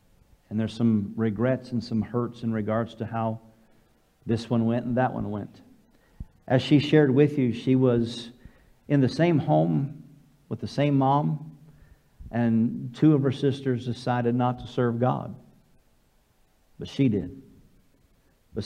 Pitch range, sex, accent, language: 115-145 Hz, male, American, English